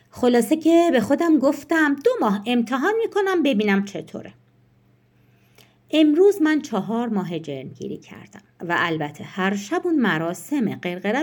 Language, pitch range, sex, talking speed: Persian, 175-285 Hz, female, 135 wpm